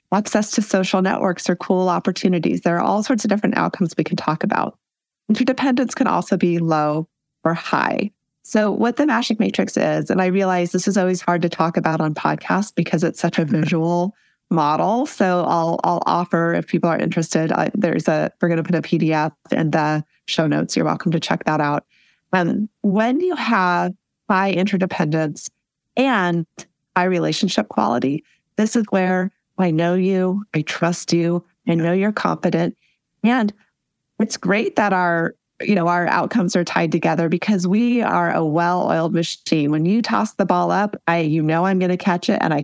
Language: English